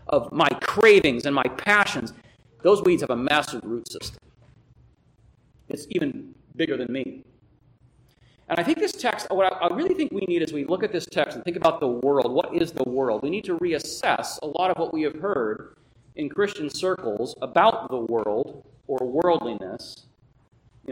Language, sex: English, male